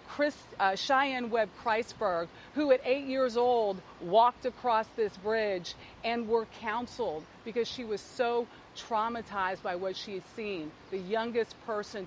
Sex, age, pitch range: female, 40-59, 200-245 Hz